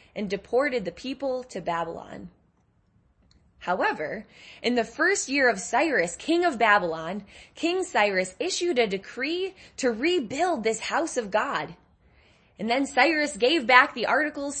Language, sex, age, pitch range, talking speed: English, female, 10-29, 180-285 Hz, 140 wpm